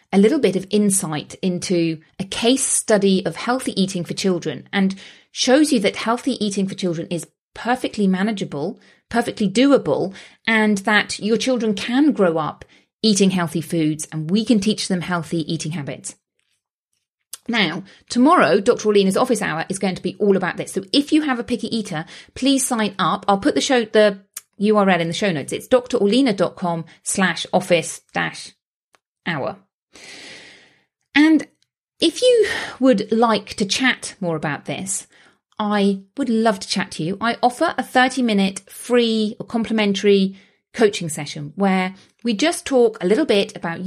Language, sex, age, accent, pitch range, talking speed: English, female, 30-49, British, 175-235 Hz, 155 wpm